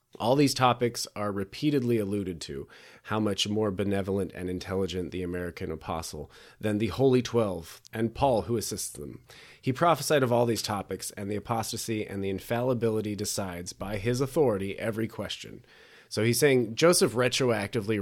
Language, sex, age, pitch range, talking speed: English, male, 30-49, 95-120 Hz, 160 wpm